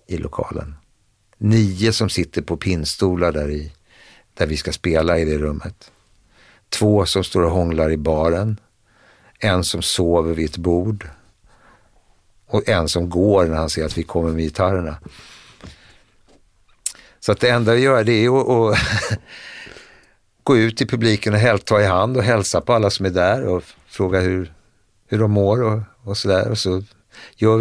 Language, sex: English, male